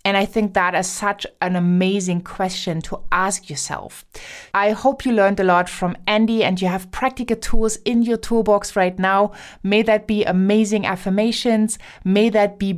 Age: 20-39